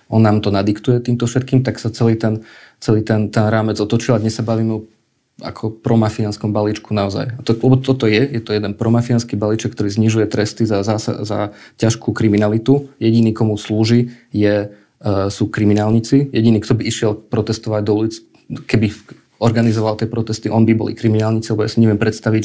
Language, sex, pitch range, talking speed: Slovak, male, 110-120 Hz, 180 wpm